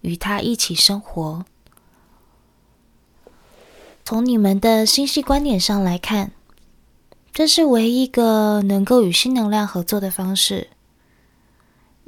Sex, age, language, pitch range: female, 20-39, Chinese, 180-225 Hz